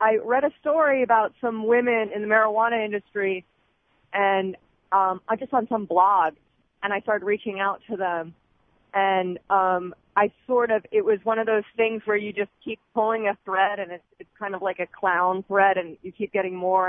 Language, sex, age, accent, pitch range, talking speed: English, female, 30-49, American, 180-215 Hz, 205 wpm